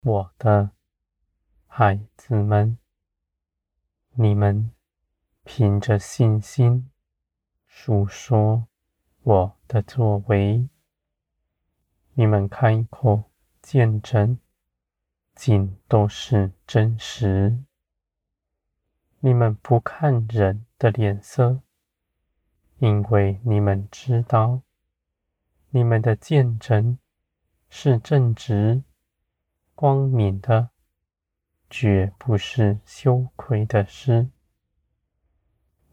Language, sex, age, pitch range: Chinese, male, 20-39, 80-120 Hz